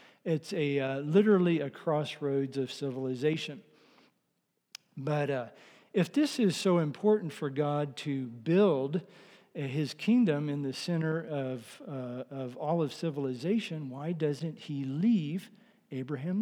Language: English